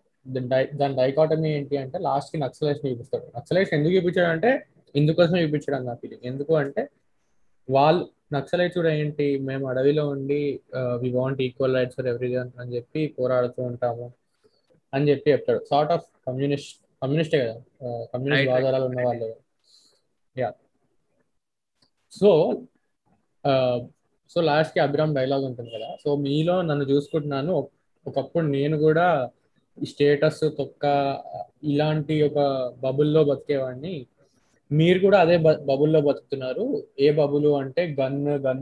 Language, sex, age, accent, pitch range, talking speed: Telugu, male, 20-39, native, 130-150 Hz, 110 wpm